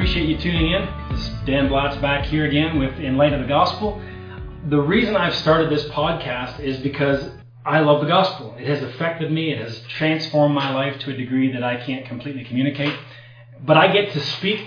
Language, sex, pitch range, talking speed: English, male, 130-150 Hz, 210 wpm